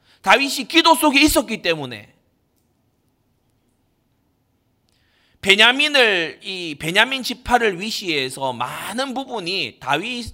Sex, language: male, Korean